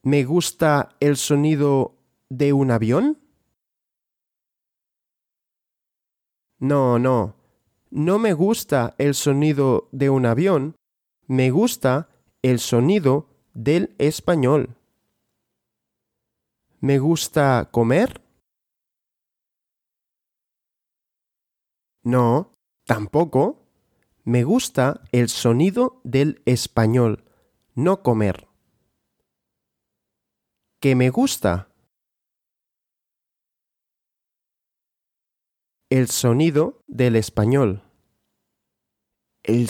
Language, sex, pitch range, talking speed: Russian, male, 120-160 Hz, 65 wpm